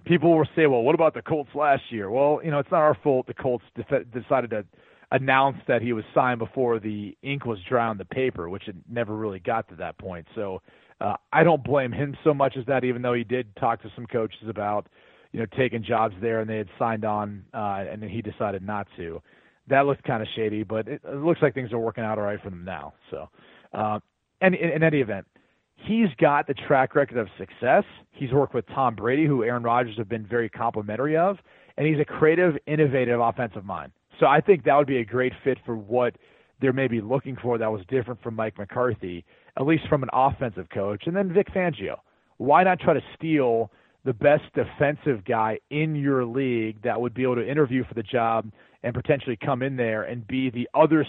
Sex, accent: male, American